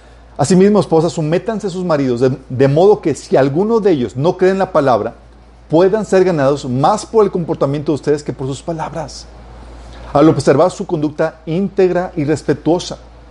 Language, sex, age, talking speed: Spanish, male, 40-59, 175 wpm